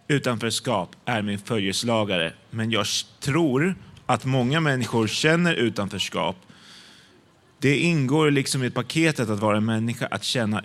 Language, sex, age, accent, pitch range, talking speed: Swedish, male, 30-49, native, 110-140 Hz, 135 wpm